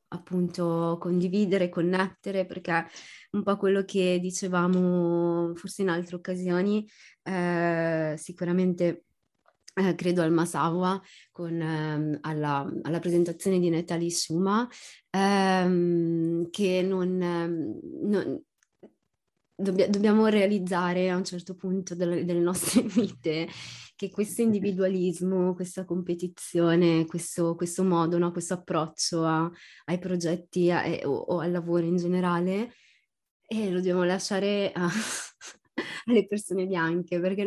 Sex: female